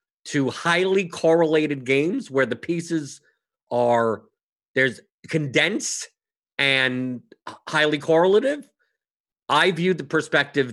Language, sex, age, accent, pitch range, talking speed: English, male, 50-69, American, 125-165 Hz, 95 wpm